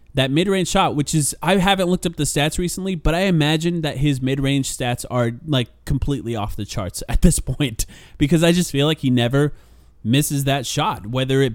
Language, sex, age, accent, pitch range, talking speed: English, male, 20-39, American, 115-150 Hz, 220 wpm